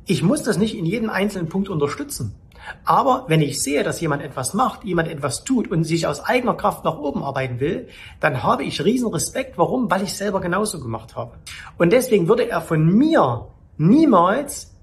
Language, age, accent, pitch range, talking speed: German, 40-59, German, 165-210 Hz, 195 wpm